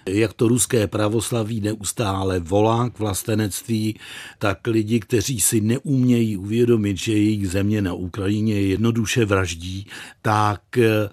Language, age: Czech, 60-79